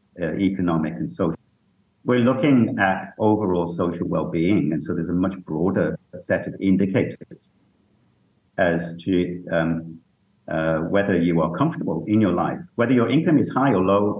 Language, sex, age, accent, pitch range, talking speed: English, male, 50-69, British, 80-100 Hz, 150 wpm